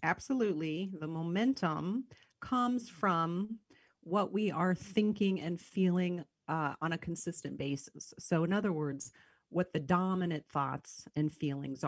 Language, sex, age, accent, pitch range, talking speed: English, female, 40-59, American, 140-185 Hz, 130 wpm